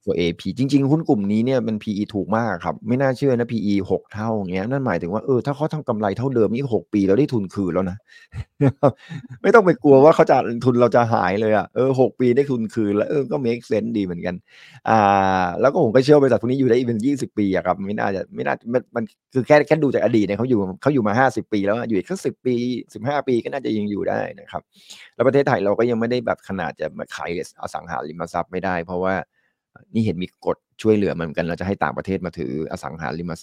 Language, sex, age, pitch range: Thai, male, 30-49, 95-130 Hz